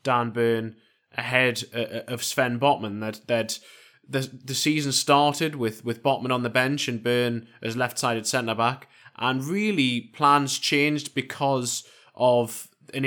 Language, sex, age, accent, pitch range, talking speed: English, male, 20-39, British, 115-140 Hz, 150 wpm